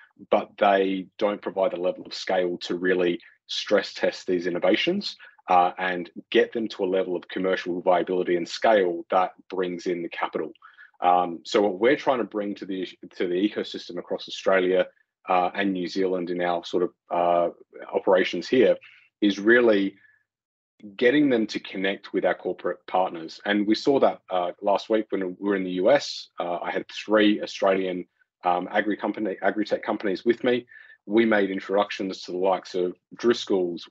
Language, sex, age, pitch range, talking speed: English, male, 30-49, 90-105 Hz, 175 wpm